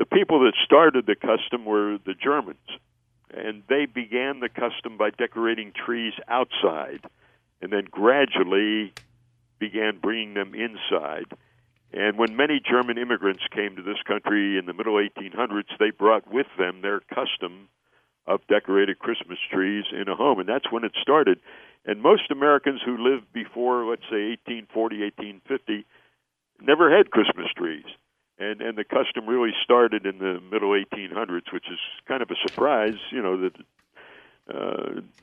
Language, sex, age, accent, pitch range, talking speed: English, male, 60-79, American, 100-125 Hz, 150 wpm